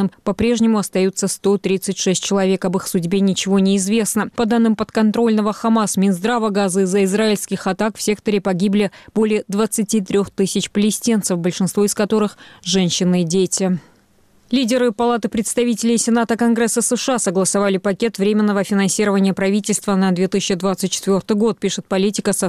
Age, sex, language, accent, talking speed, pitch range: 20-39, female, Russian, native, 130 wpm, 195-220 Hz